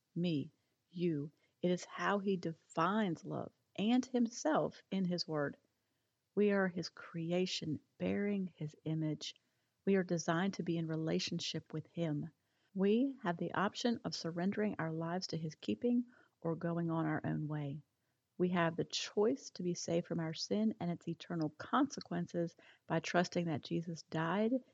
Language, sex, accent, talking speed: English, female, American, 160 wpm